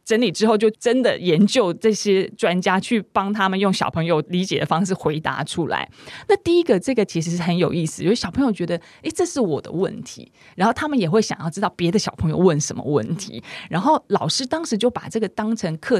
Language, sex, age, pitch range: Chinese, female, 30-49, 165-215 Hz